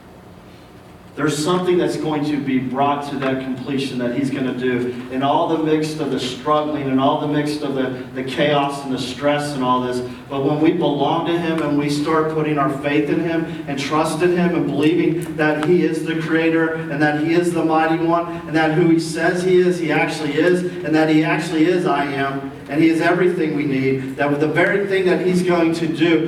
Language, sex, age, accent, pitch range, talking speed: English, male, 40-59, American, 125-160 Hz, 230 wpm